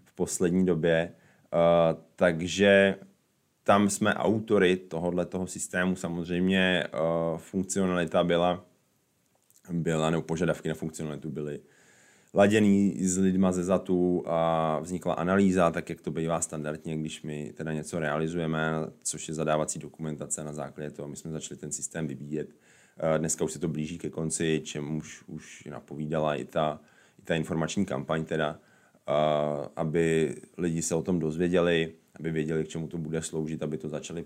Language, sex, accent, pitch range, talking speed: Czech, male, native, 75-90 Hz, 145 wpm